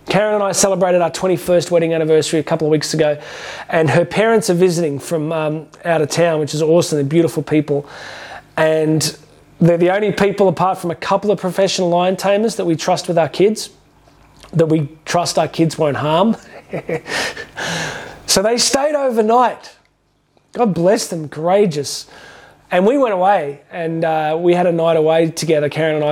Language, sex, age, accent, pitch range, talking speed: English, male, 20-39, Australian, 155-185 Hz, 175 wpm